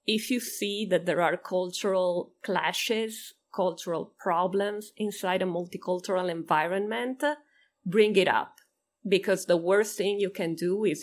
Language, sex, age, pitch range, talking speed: Italian, female, 30-49, 175-210 Hz, 135 wpm